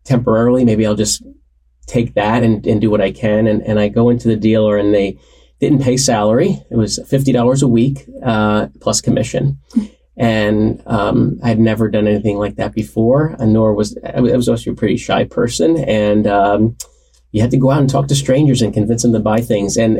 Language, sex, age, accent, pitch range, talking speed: English, male, 30-49, American, 105-125 Hz, 205 wpm